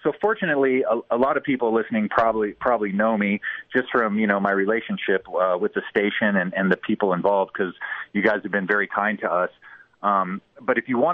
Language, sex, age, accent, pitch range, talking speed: English, male, 30-49, American, 100-120 Hz, 220 wpm